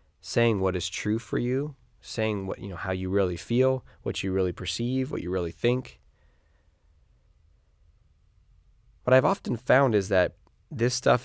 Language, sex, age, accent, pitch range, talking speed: English, male, 20-39, American, 90-110 Hz, 160 wpm